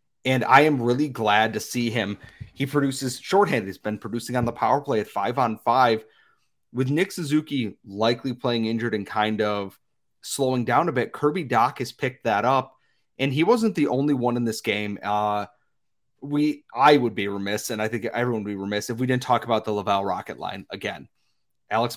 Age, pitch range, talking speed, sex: 30-49, 110-135 Hz, 200 wpm, male